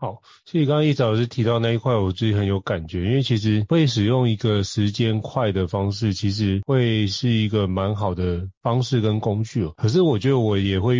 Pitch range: 100-125 Hz